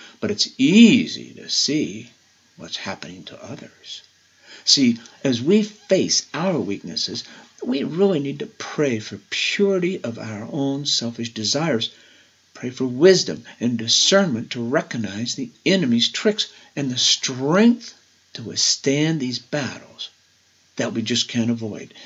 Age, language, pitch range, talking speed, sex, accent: 60-79, English, 110-160 Hz, 135 wpm, male, American